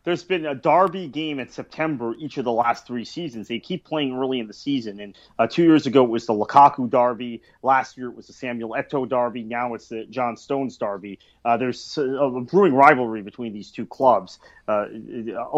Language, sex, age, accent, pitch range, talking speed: English, male, 30-49, American, 115-140 Hz, 210 wpm